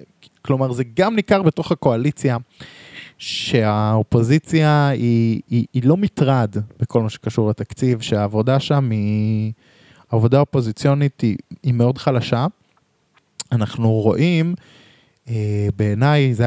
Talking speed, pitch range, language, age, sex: 105 wpm, 110-140 Hz, Hebrew, 20-39, male